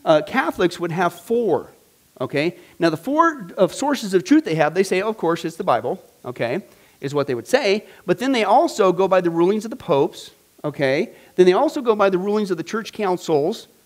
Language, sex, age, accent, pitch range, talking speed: English, male, 40-59, American, 170-240 Hz, 215 wpm